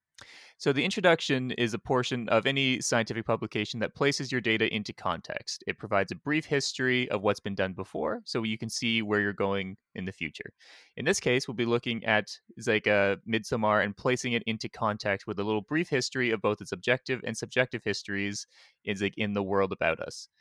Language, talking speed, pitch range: English, 200 wpm, 105-125 Hz